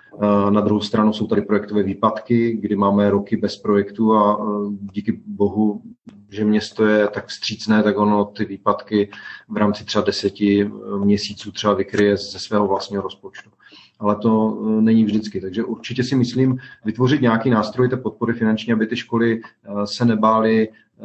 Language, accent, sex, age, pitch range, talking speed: Czech, native, male, 40-59, 105-115 Hz, 155 wpm